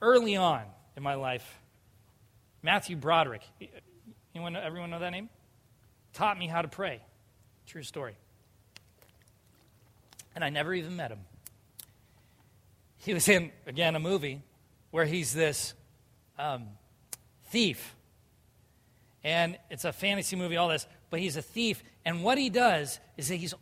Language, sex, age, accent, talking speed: English, male, 40-59, American, 135 wpm